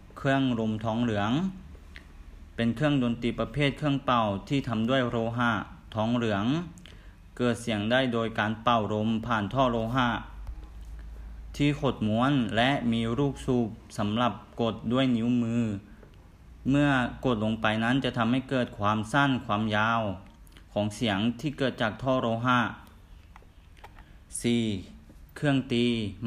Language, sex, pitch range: Thai, male, 105-125 Hz